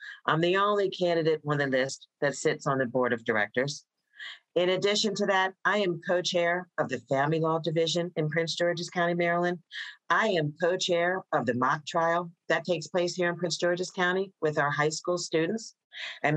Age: 50-69